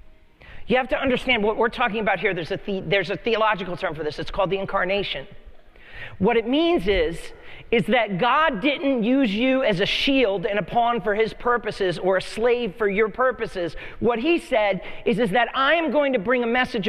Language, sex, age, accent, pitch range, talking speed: English, male, 40-59, American, 225-295 Hz, 215 wpm